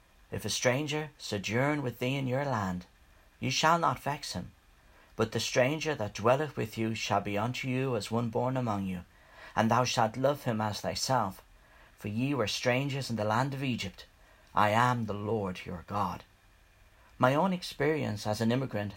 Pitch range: 100-130 Hz